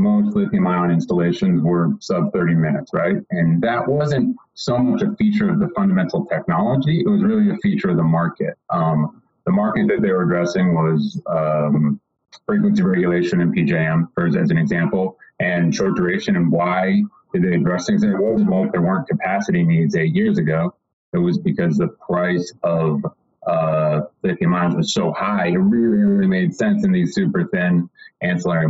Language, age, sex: English, 30-49, male